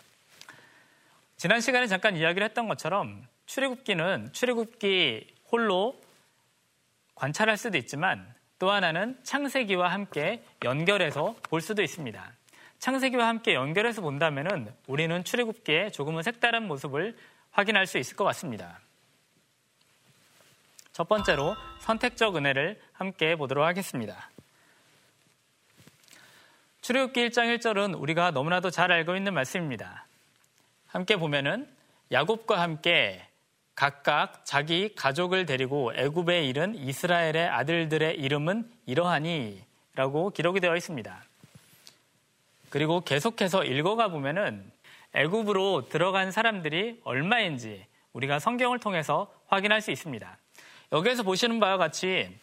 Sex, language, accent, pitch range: male, Korean, native, 155-220 Hz